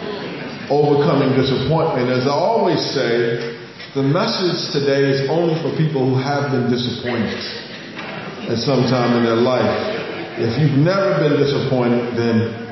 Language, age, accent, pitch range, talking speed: English, 40-59, American, 125-150 Hz, 135 wpm